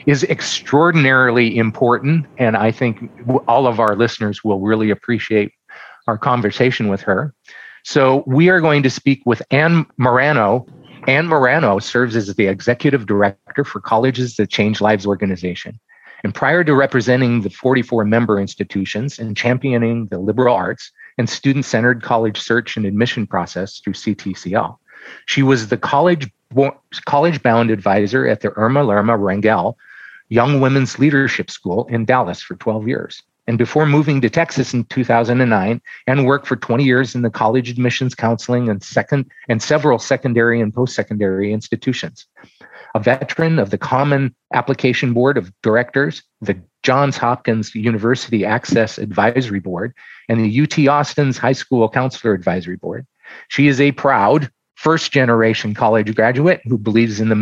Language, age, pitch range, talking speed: English, 40-59, 110-135 Hz, 150 wpm